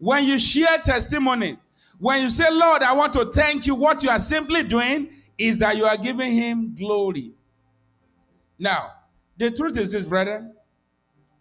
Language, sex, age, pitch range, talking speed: English, male, 50-69, 200-305 Hz, 165 wpm